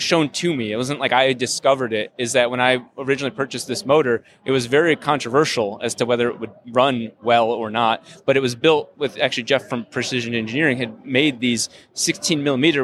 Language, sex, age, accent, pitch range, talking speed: English, male, 20-39, American, 120-150 Hz, 210 wpm